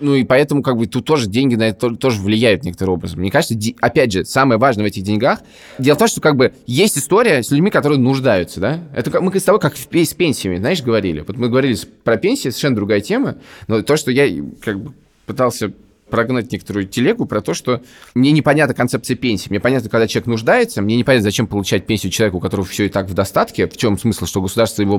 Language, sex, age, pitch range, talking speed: Russian, male, 20-39, 110-145 Hz, 230 wpm